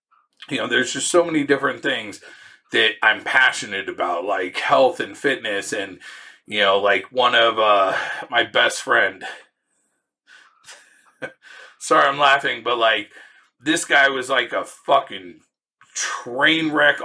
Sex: male